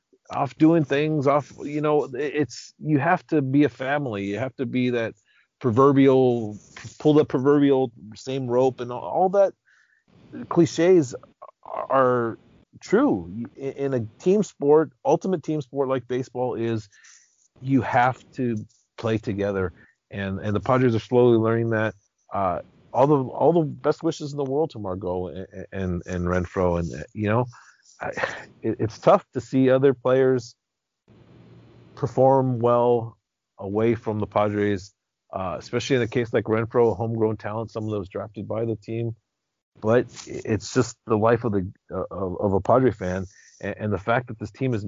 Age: 40-59